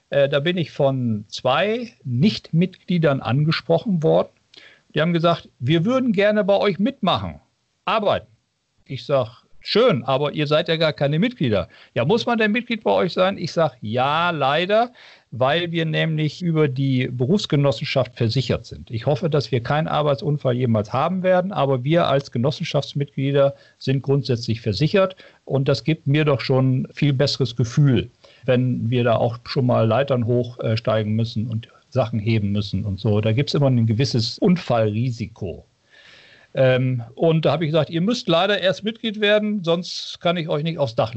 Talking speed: 165 wpm